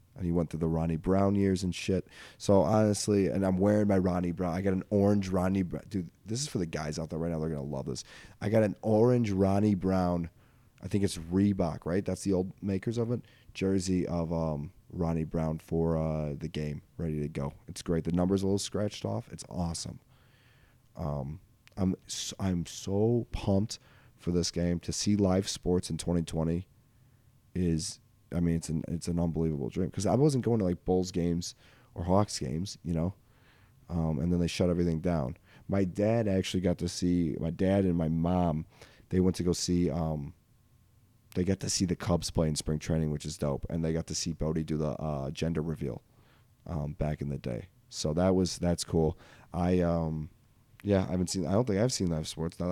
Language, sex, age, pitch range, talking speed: English, male, 20-39, 80-100 Hz, 210 wpm